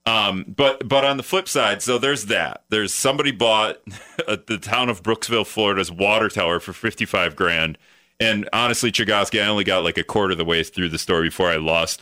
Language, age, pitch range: English, 30-49, 85-130 Hz